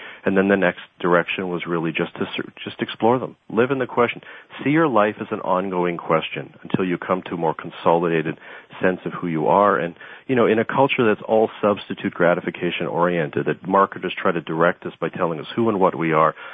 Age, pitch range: 40-59, 85-105 Hz